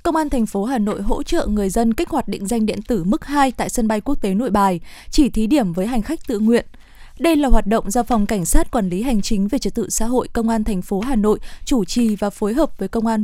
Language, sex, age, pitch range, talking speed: Vietnamese, female, 20-39, 215-265 Hz, 290 wpm